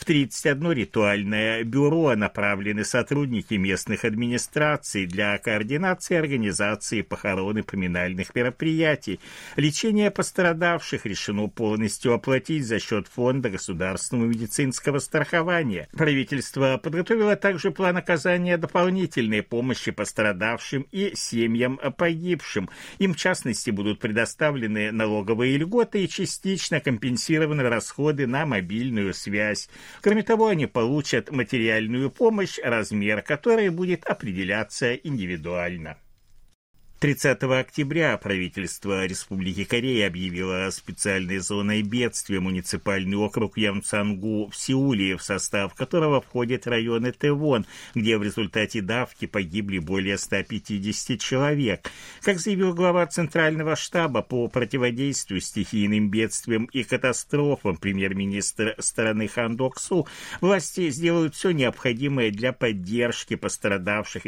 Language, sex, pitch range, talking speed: Russian, male, 105-150 Hz, 105 wpm